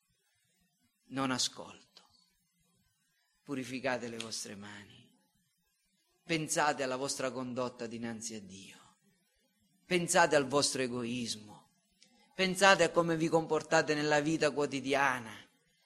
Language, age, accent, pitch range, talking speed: Italian, 40-59, native, 170-255 Hz, 95 wpm